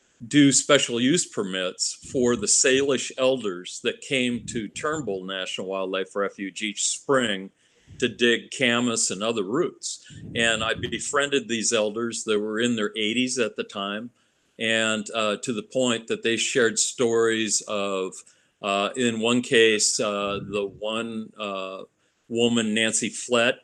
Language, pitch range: English, 105-120 Hz